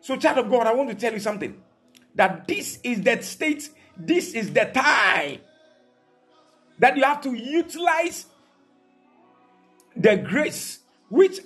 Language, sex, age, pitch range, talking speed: English, male, 50-69, 225-325 Hz, 140 wpm